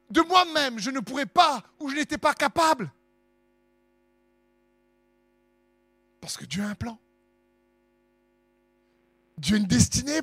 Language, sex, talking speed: French, male, 125 wpm